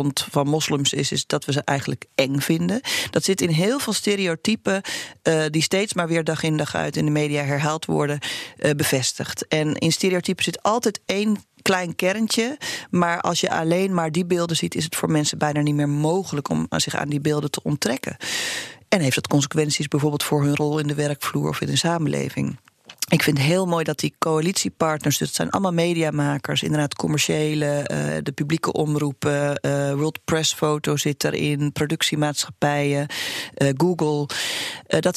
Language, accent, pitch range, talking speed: Dutch, Dutch, 145-180 Hz, 185 wpm